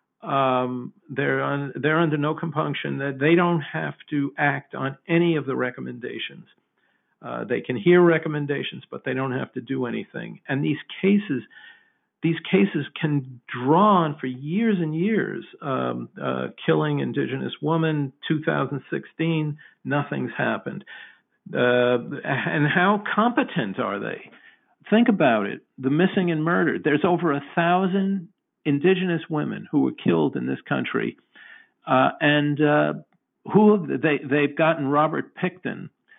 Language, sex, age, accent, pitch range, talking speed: English, male, 50-69, American, 135-175 Hz, 140 wpm